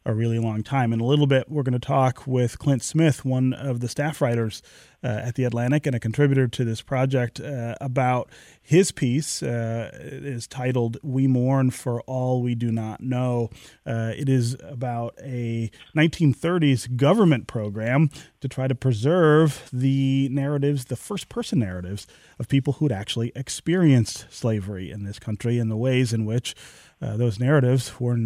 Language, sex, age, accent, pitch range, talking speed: English, male, 30-49, American, 115-140 Hz, 175 wpm